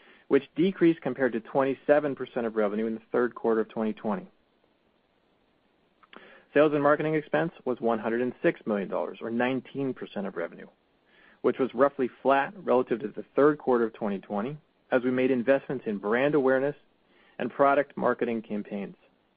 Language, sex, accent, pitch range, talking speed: English, male, American, 125-155 Hz, 145 wpm